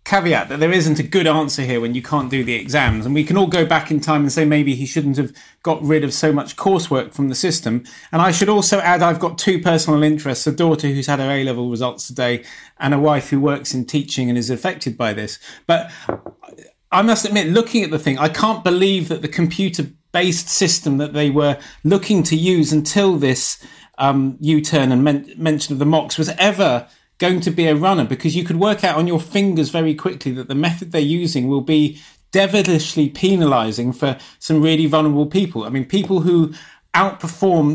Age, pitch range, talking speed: 30-49, 145-180 Hz, 210 wpm